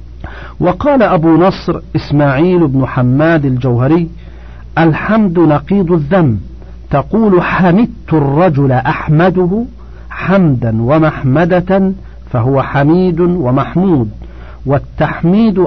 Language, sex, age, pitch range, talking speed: Arabic, male, 50-69, 125-170 Hz, 75 wpm